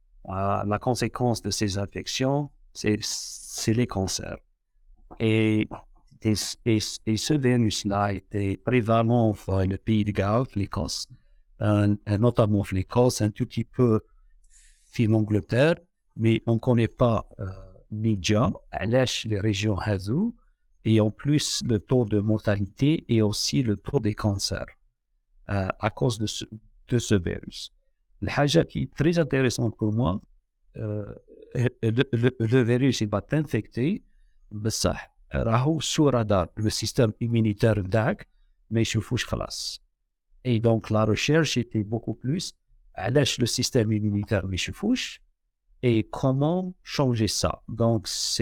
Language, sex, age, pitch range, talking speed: Arabic, male, 50-69, 105-125 Hz, 130 wpm